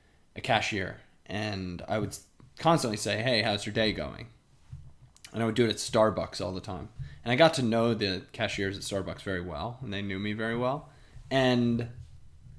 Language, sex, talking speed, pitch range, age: English, male, 185 wpm, 105-140 Hz, 20-39